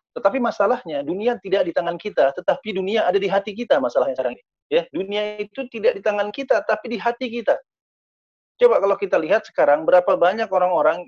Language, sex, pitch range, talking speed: Indonesian, male, 175-235 Hz, 190 wpm